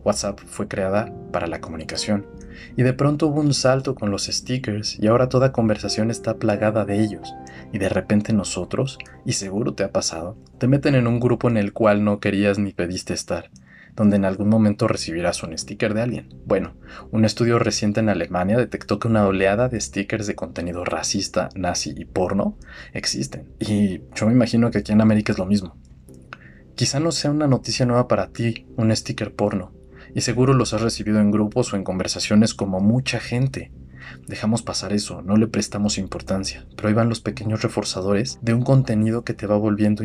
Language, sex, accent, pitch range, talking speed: Spanish, male, Mexican, 95-115 Hz, 190 wpm